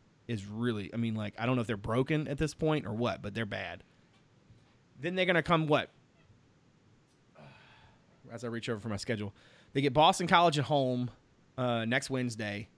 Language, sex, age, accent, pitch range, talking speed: English, male, 30-49, American, 120-150 Hz, 195 wpm